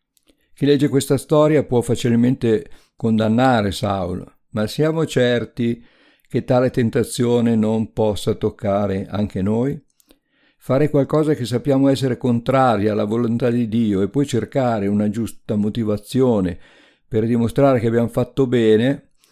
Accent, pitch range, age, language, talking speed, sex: native, 105-130 Hz, 50-69, Italian, 125 wpm, male